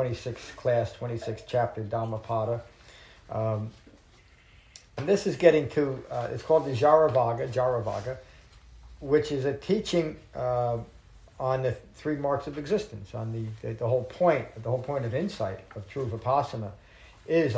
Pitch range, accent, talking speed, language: 110-135 Hz, American, 145 wpm, English